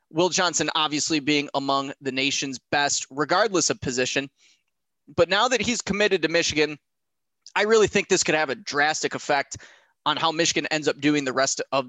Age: 20-39